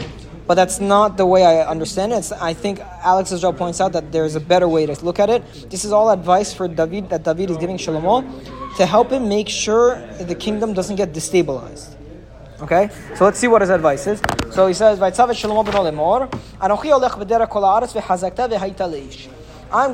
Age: 20-39